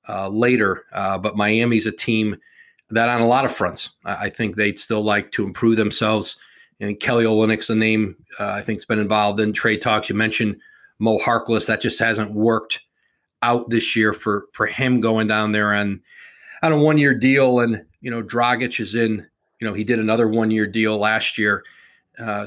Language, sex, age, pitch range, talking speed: English, male, 40-59, 110-135 Hz, 195 wpm